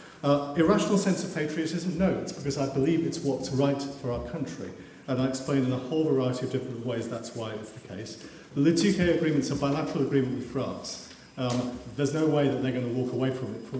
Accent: British